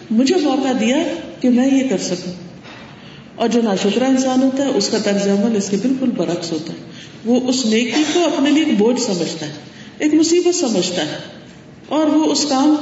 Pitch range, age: 195-270 Hz, 50-69